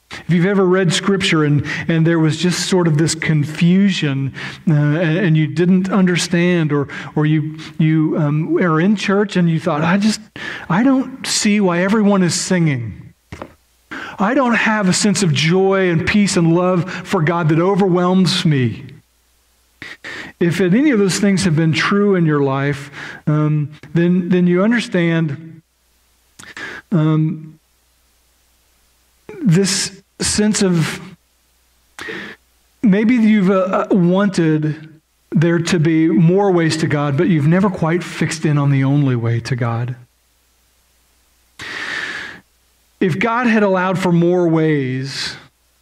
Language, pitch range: English, 145-185 Hz